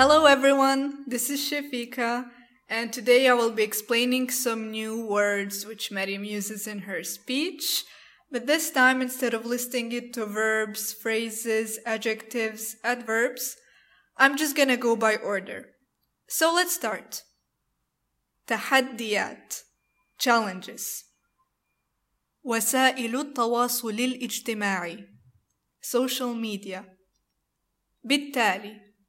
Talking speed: 100 wpm